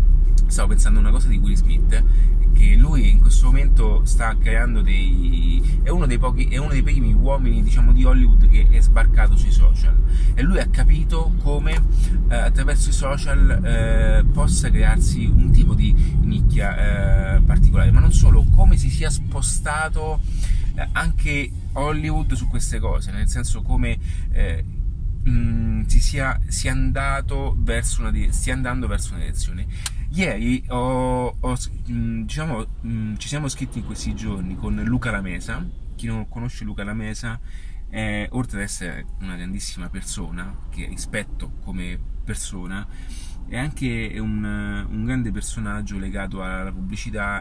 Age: 30-49